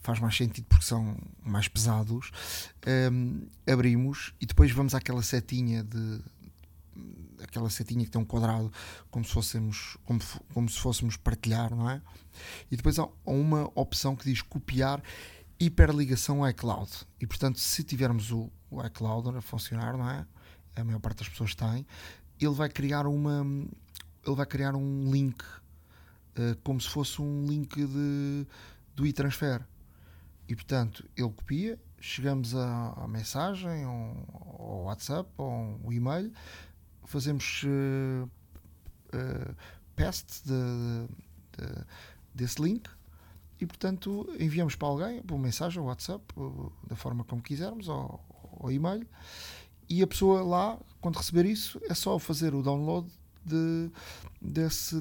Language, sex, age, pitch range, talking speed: Portuguese, male, 30-49, 95-145 Hz, 145 wpm